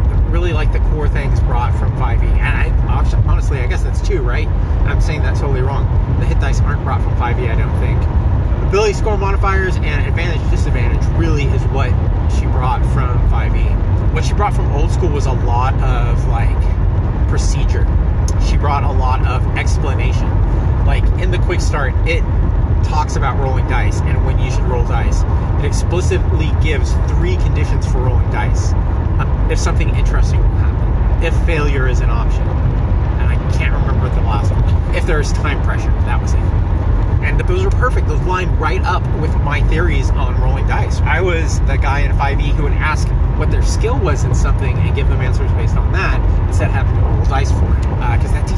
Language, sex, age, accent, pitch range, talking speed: English, male, 30-49, American, 85-100 Hz, 195 wpm